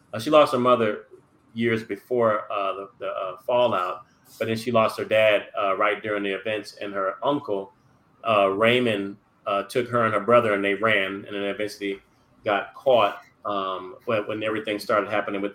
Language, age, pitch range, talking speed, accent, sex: English, 30-49, 105-125 Hz, 180 wpm, American, male